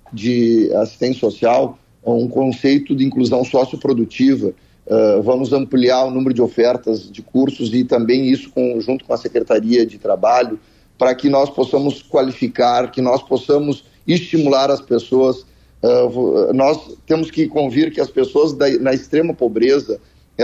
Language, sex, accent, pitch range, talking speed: Portuguese, male, Brazilian, 125-145 Hz, 135 wpm